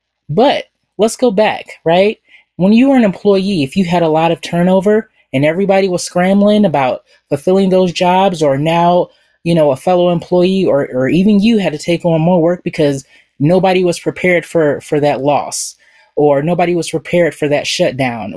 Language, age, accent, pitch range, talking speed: English, 20-39, American, 150-195 Hz, 185 wpm